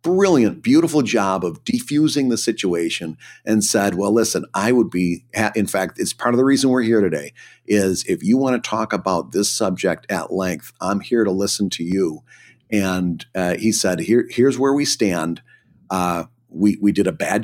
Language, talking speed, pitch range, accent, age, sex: English, 195 wpm, 95-120 Hz, American, 50-69, male